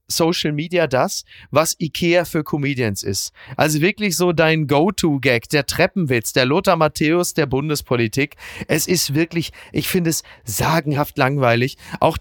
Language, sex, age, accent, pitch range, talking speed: German, male, 40-59, German, 125-165 Hz, 145 wpm